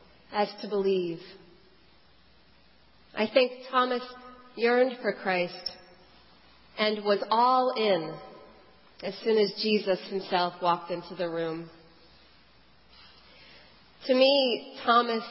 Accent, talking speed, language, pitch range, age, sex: American, 100 wpm, English, 200-275 Hz, 30-49, female